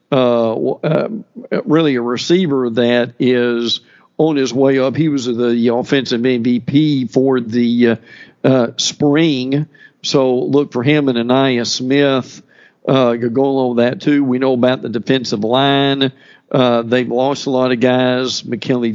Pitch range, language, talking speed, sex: 130-155 Hz, English, 150 wpm, male